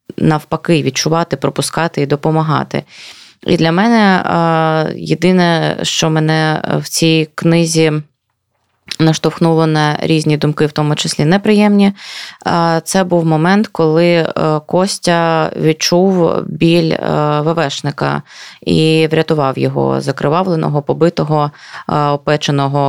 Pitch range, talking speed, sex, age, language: 150-170 Hz, 95 wpm, female, 20-39, Ukrainian